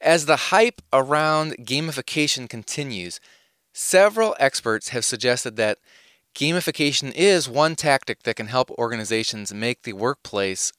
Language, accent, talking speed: English, American, 120 wpm